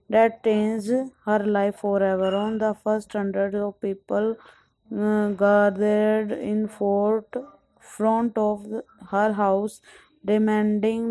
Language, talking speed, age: English, 115 wpm, 20-39